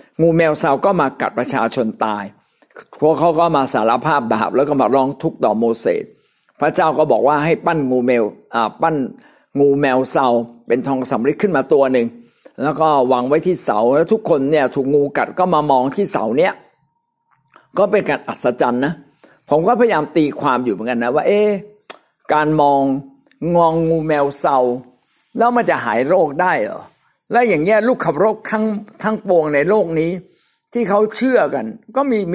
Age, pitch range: 50-69, 140-210 Hz